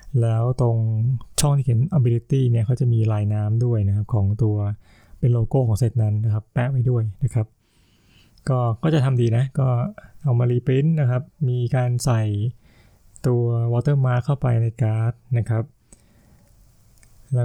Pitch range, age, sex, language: 115-135 Hz, 20-39, male, Thai